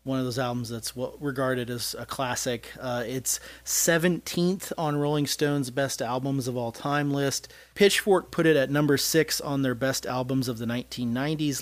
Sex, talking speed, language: male, 180 wpm, English